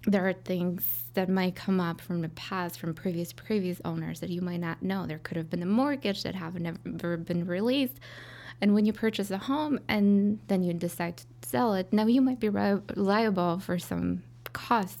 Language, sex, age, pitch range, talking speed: English, female, 20-39, 165-205 Hz, 210 wpm